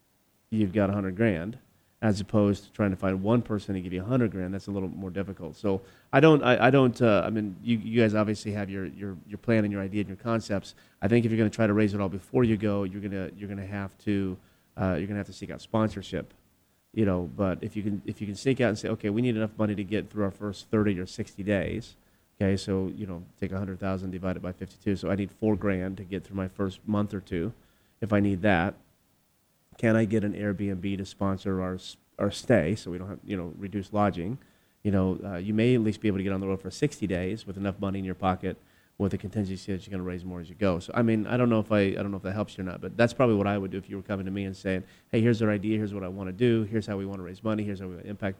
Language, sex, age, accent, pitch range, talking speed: English, male, 30-49, American, 95-110 Hz, 295 wpm